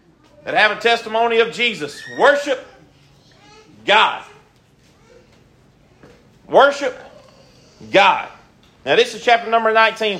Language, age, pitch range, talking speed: English, 40-59, 215-275 Hz, 95 wpm